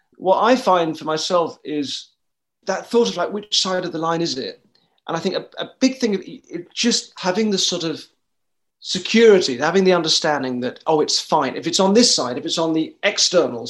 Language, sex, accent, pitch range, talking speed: English, male, British, 145-205 Hz, 210 wpm